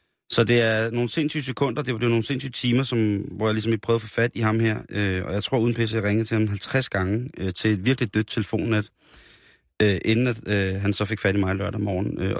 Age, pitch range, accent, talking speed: 30-49, 95-120 Hz, native, 265 wpm